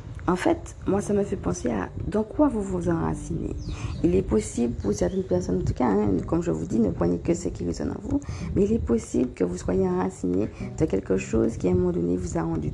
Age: 40-59